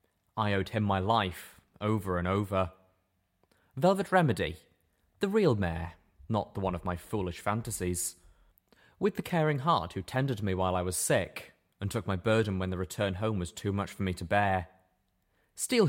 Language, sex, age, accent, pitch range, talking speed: English, male, 20-39, British, 90-110 Hz, 180 wpm